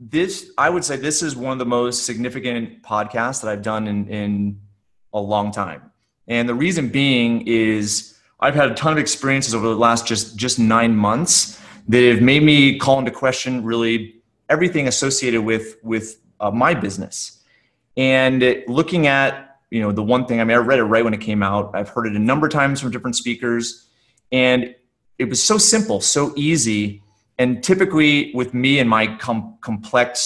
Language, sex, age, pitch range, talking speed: English, male, 30-49, 115-135 Hz, 190 wpm